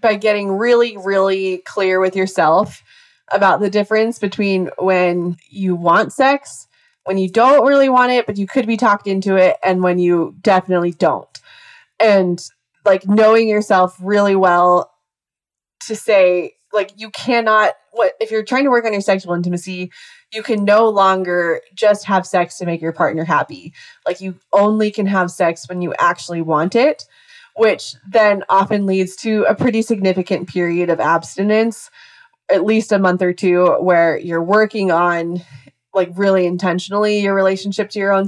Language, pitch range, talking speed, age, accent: English, 175-215 Hz, 165 wpm, 20-39, American